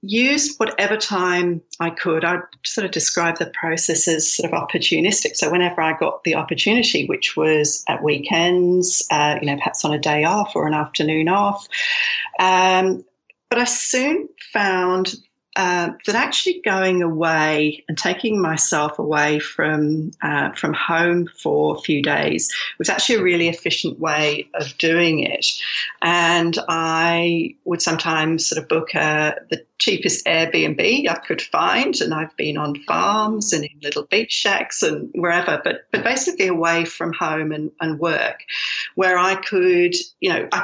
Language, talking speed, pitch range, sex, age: English, 160 wpm, 155-195 Hz, female, 40-59